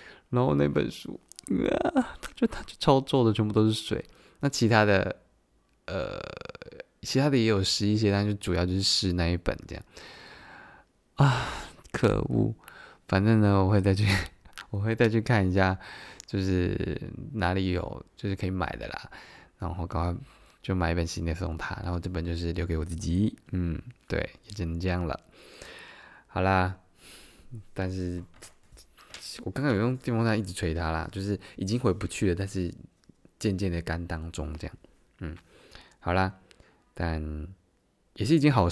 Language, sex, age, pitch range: Chinese, male, 20-39, 85-105 Hz